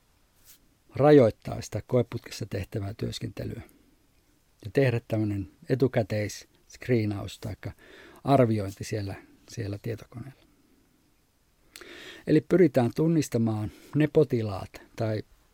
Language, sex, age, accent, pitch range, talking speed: English, male, 50-69, Finnish, 105-130 Hz, 75 wpm